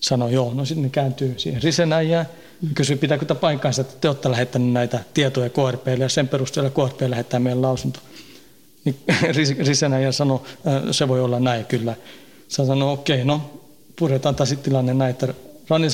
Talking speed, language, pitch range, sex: 160 wpm, Finnish, 130-155 Hz, male